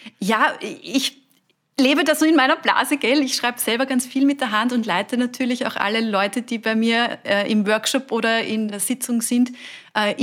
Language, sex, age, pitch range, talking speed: German, female, 30-49, 215-255 Hz, 205 wpm